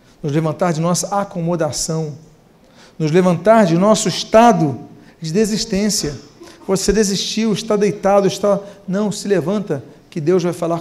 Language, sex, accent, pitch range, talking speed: Portuguese, male, Brazilian, 175-230 Hz, 135 wpm